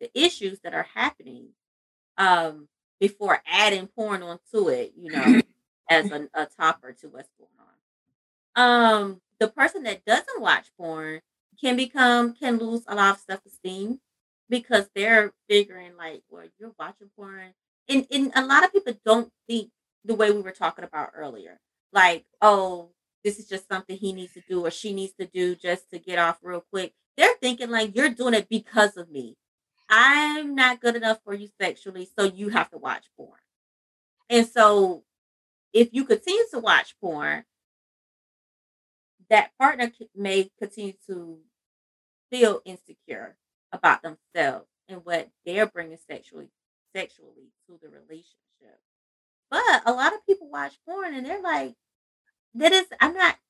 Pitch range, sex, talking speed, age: 180-240 Hz, female, 160 wpm, 30-49